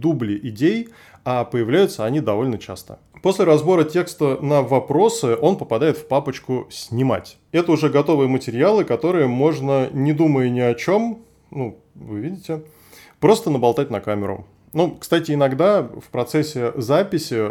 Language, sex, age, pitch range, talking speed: Russian, male, 20-39, 120-155 Hz, 140 wpm